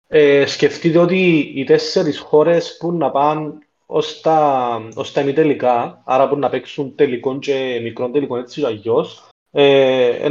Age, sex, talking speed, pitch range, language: 30-49, male, 145 wpm, 135-205 Hz, Greek